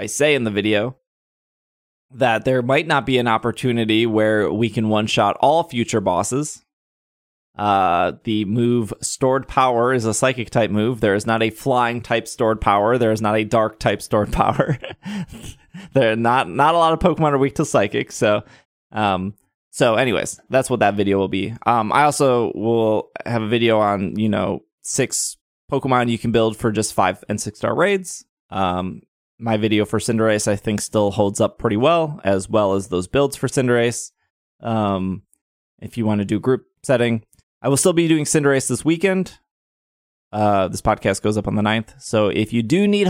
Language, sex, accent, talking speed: English, male, American, 190 wpm